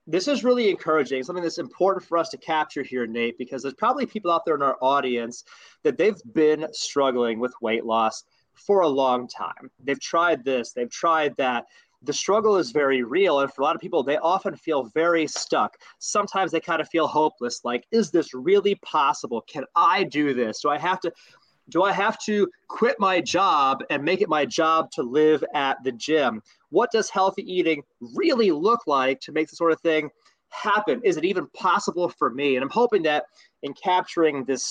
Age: 30-49